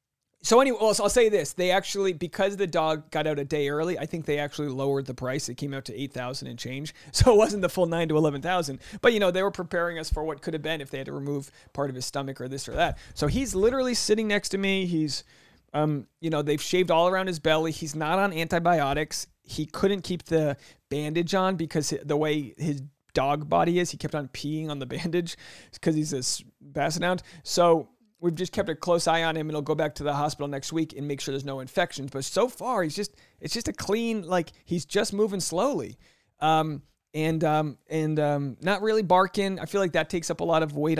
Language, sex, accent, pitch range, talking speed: English, male, American, 145-185 Hz, 240 wpm